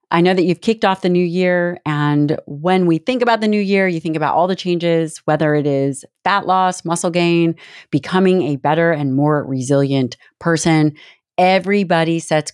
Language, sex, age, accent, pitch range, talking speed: English, female, 30-49, American, 145-190 Hz, 185 wpm